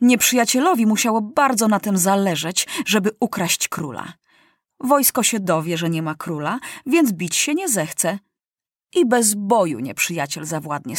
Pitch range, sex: 175-240 Hz, female